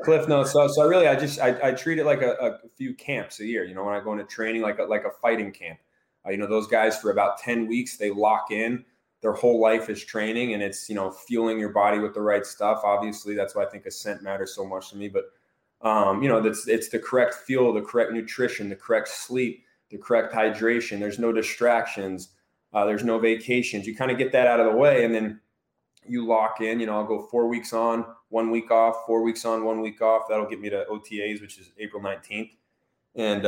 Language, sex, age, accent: English, male, 20-39, American